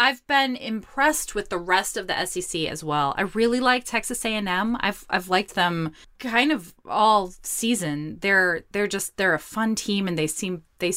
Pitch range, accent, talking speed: 160-240 Hz, American, 190 wpm